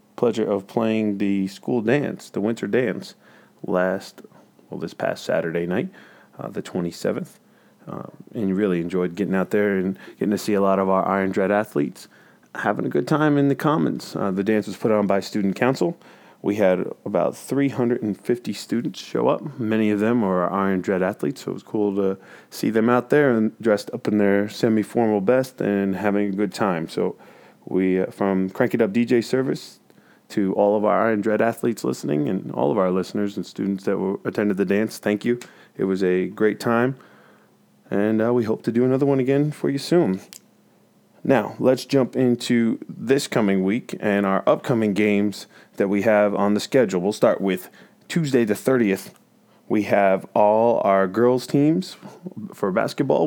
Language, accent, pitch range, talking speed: English, American, 95-120 Hz, 185 wpm